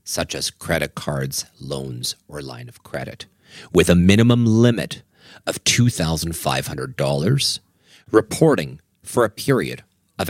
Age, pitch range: 40-59, 85-125 Hz